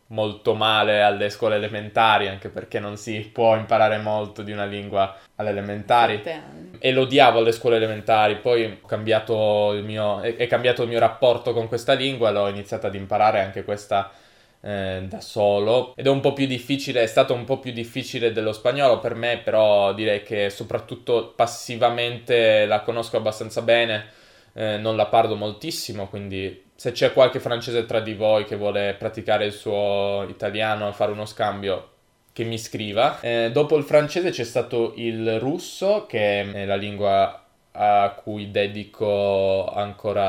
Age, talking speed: 20-39, 160 wpm